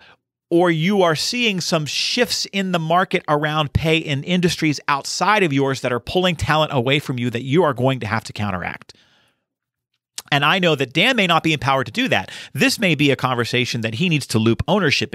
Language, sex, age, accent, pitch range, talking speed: English, male, 40-59, American, 125-195 Hz, 215 wpm